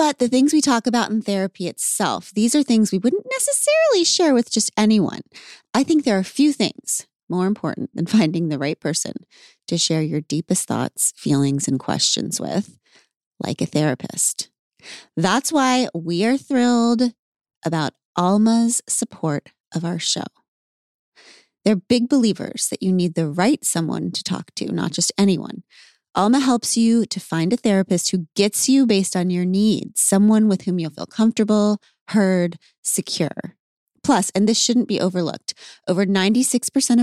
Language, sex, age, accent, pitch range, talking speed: English, female, 30-49, American, 170-235 Hz, 165 wpm